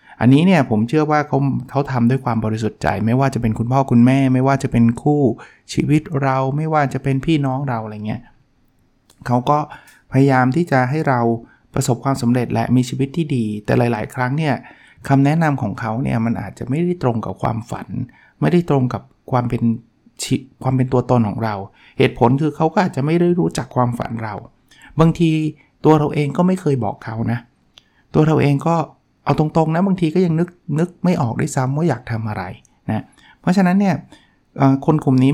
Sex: male